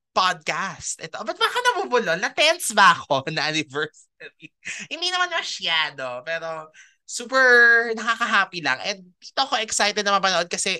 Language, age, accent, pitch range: Filipino, 20-39, native, 155-220 Hz